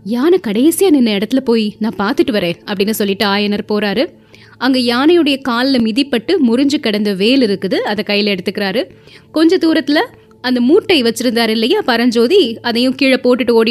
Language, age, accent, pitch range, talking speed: Tamil, 20-39, native, 210-275 Hz, 145 wpm